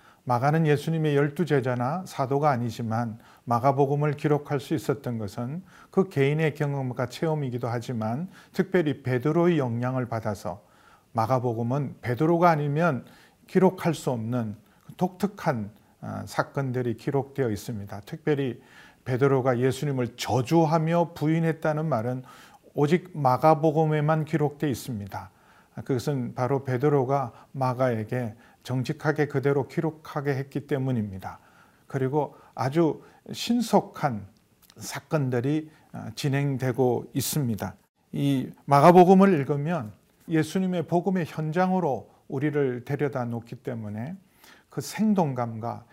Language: Korean